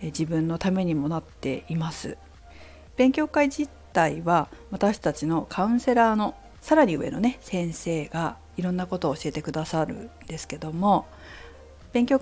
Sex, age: female, 50-69